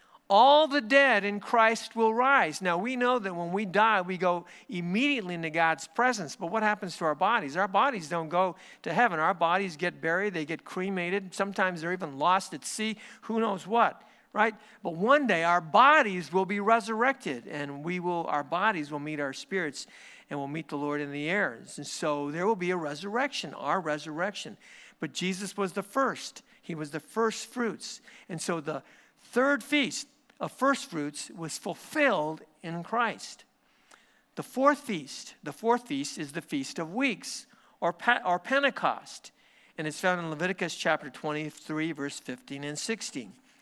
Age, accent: 50-69, American